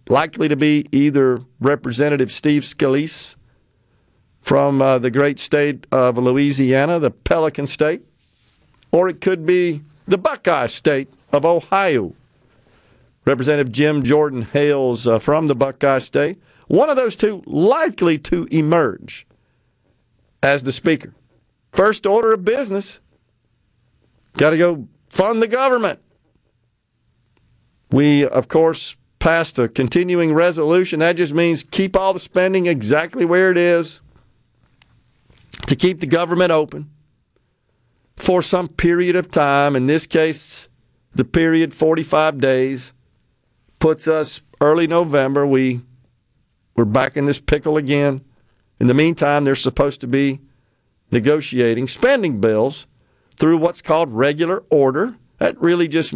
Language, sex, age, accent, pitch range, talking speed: English, male, 50-69, American, 130-165 Hz, 125 wpm